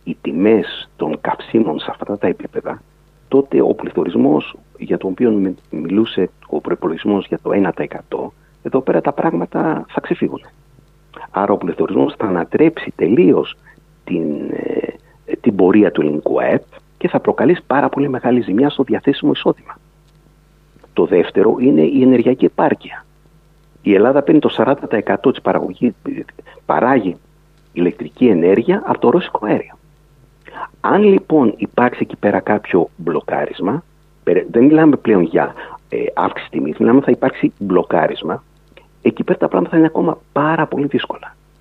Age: 50-69